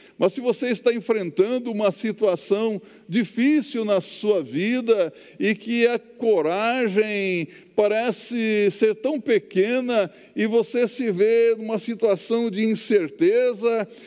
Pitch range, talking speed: 175-260 Hz, 115 wpm